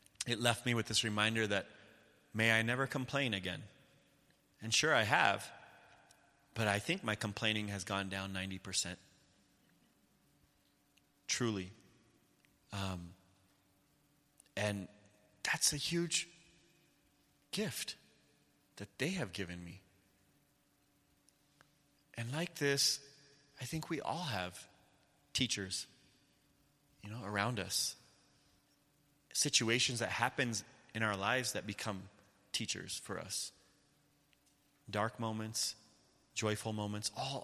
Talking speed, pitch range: 105 wpm, 100-135 Hz